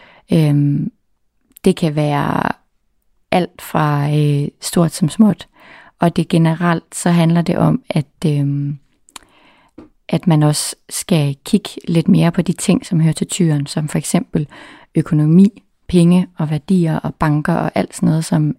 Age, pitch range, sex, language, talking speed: 30-49, 145-180 Hz, female, English, 150 wpm